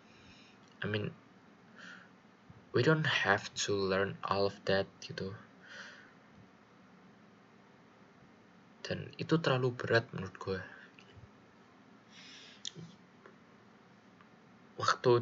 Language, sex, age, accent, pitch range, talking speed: Indonesian, male, 20-39, native, 100-130 Hz, 70 wpm